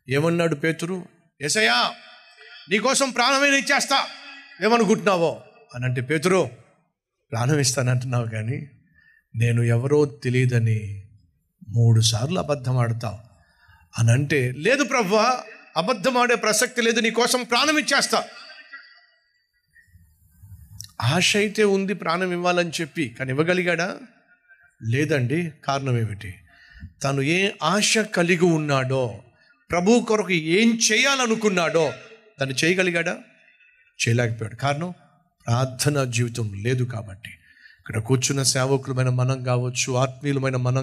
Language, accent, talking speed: Telugu, native, 90 wpm